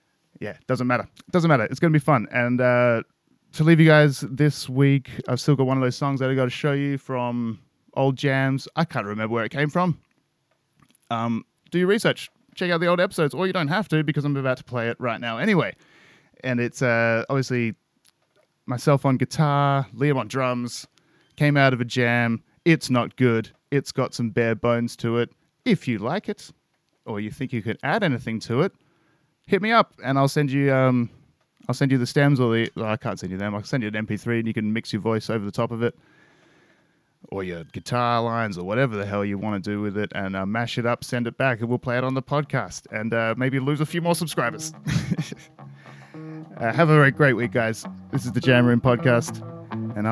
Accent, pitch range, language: Australian, 115-145 Hz, English